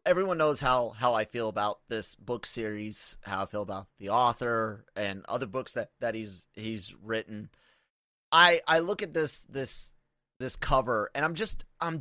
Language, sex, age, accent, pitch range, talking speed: English, male, 30-49, American, 110-150 Hz, 180 wpm